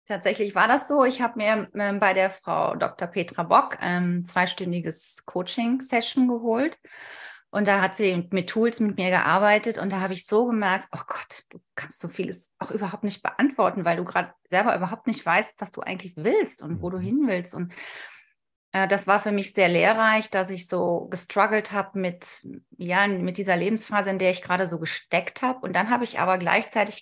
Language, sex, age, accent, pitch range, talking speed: German, female, 30-49, German, 185-230 Hz, 205 wpm